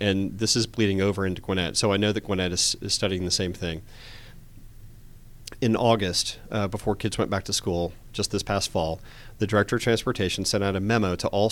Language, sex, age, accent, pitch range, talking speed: English, male, 40-59, American, 95-115 Hz, 215 wpm